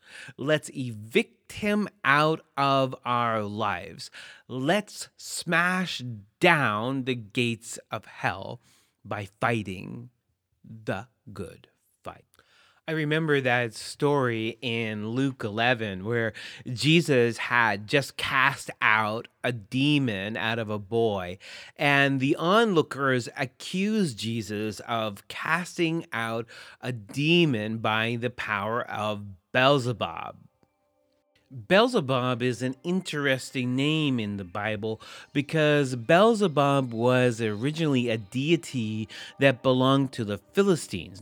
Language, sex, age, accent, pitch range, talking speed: English, male, 30-49, American, 115-150 Hz, 105 wpm